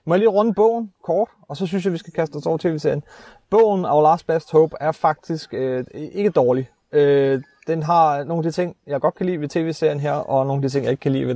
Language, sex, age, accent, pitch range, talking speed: Danish, male, 30-49, native, 130-160 Hz, 265 wpm